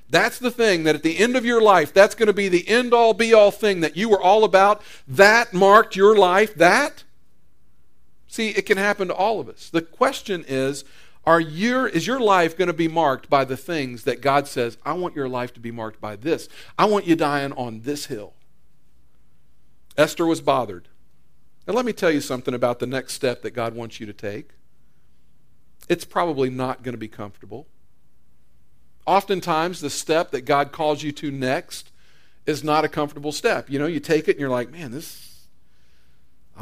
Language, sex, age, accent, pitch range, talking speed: English, male, 50-69, American, 130-195 Hz, 200 wpm